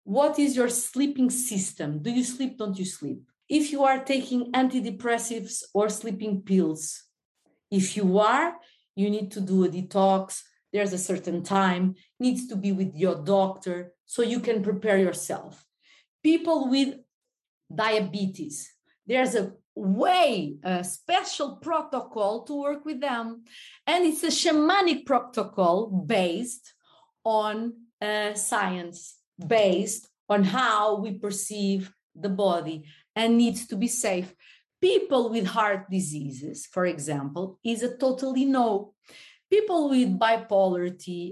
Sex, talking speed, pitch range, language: female, 130 wpm, 190-260 Hz, English